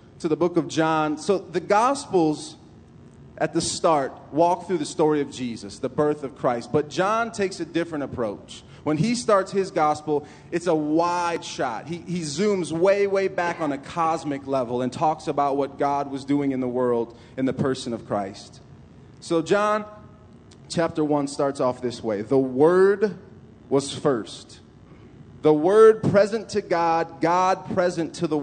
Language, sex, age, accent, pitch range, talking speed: English, male, 30-49, American, 135-175 Hz, 175 wpm